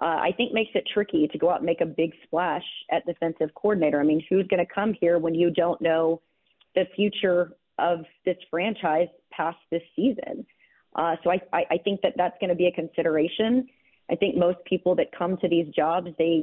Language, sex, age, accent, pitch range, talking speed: English, female, 30-49, American, 160-180 Hz, 215 wpm